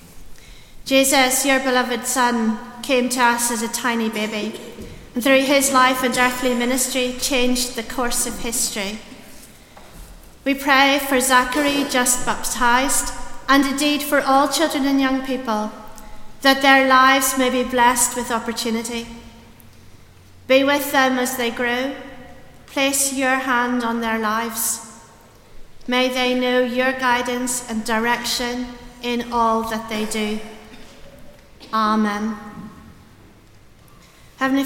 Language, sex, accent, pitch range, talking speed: English, female, British, 230-265 Hz, 125 wpm